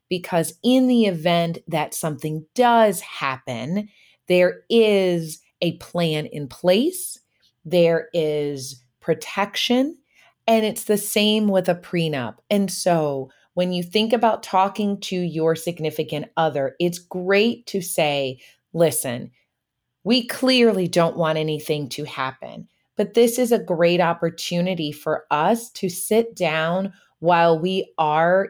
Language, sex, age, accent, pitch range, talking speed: English, female, 30-49, American, 160-205 Hz, 130 wpm